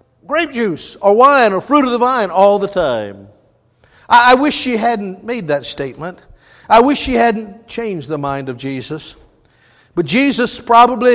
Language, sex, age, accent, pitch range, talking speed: English, male, 50-69, American, 150-250 Hz, 170 wpm